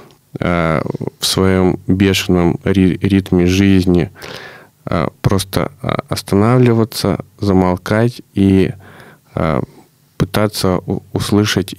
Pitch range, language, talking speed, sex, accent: 90-105 Hz, Russian, 55 wpm, male, native